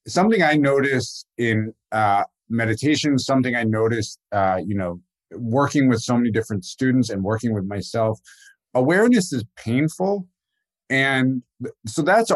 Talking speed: 135 wpm